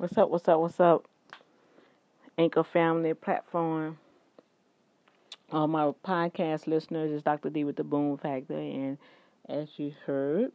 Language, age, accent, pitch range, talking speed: English, 40-59, American, 135-165 Hz, 140 wpm